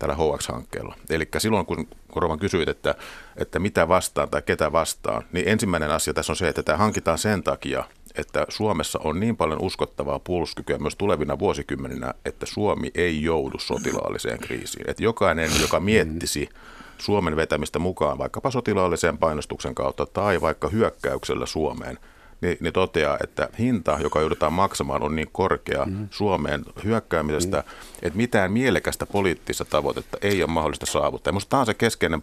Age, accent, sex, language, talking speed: 50-69, native, male, Finnish, 150 wpm